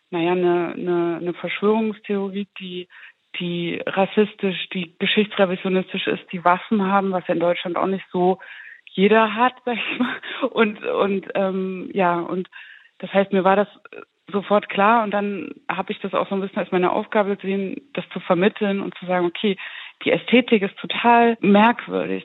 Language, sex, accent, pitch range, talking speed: German, female, German, 180-215 Hz, 165 wpm